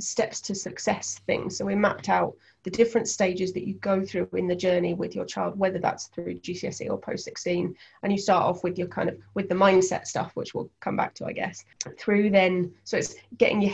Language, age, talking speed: English, 20-39, 230 wpm